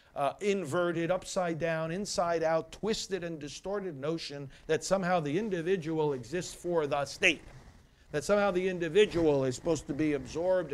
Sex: male